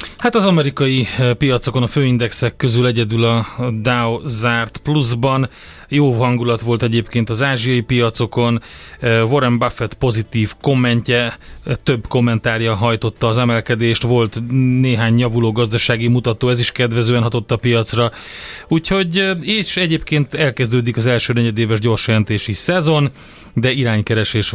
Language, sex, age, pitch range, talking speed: Hungarian, male, 30-49, 115-130 Hz, 120 wpm